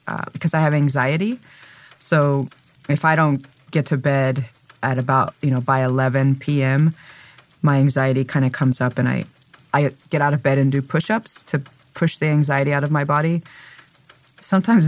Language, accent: English, American